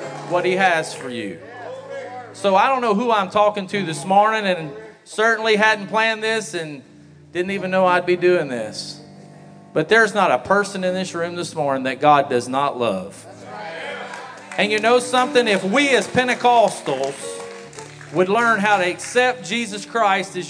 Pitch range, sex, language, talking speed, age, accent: 175-230 Hz, male, English, 175 wpm, 40-59, American